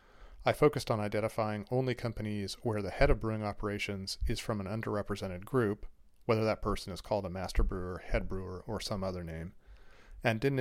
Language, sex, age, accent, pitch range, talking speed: English, male, 40-59, American, 95-115 Hz, 185 wpm